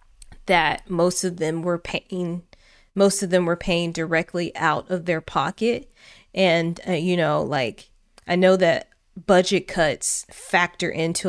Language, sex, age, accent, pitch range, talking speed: English, female, 20-39, American, 165-200 Hz, 150 wpm